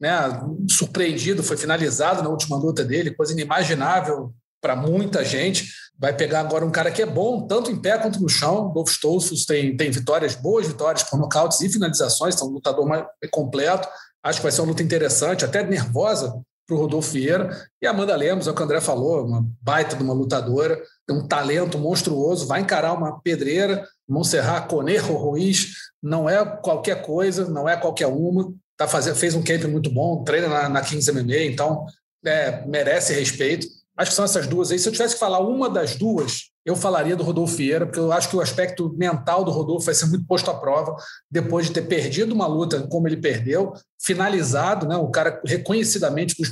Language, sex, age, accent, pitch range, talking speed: Portuguese, male, 40-59, Brazilian, 150-185 Hz, 200 wpm